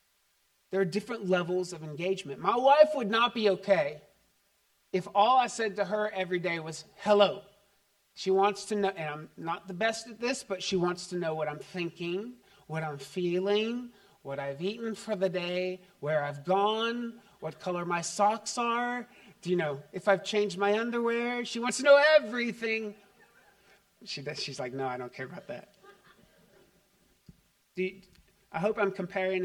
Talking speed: 175 wpm